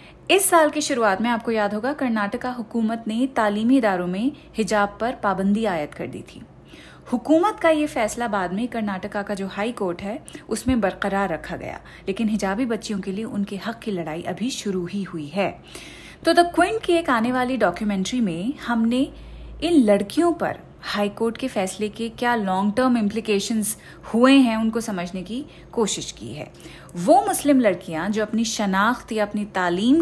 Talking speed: 180 wpm